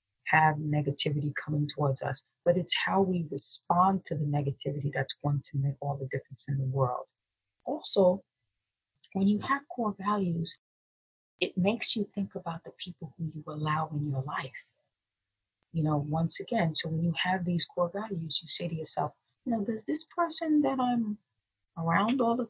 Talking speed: 180 wpm